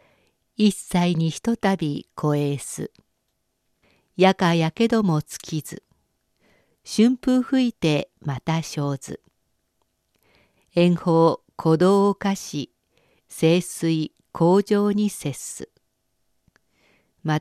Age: 50-69